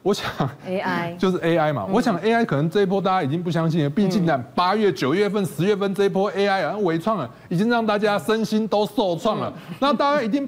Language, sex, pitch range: Chinese, male, 165-235 Hz